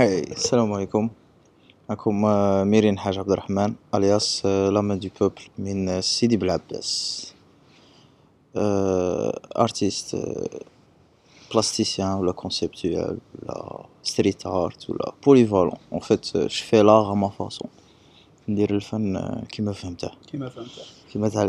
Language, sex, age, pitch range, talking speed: Arabic, male, 20-39, 100-125 Hz, 105 wpm